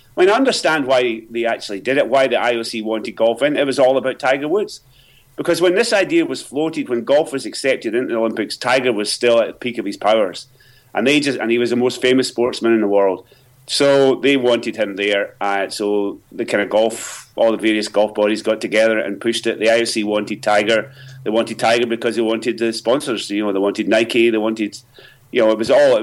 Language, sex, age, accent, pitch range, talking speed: English, male, 30-49, British, 110-130 Hz, 235 wpm